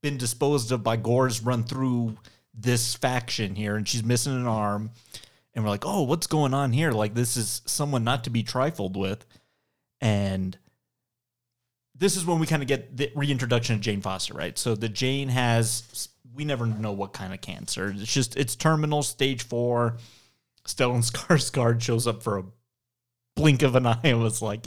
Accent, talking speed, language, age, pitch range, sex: American, 185 wpm, English, 30-49, 110-140 Hz, male